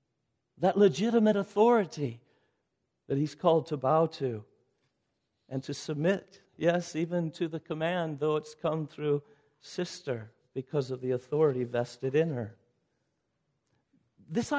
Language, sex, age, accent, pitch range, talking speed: English, male, 50-69, American, 140-215 Hz, 125 wpm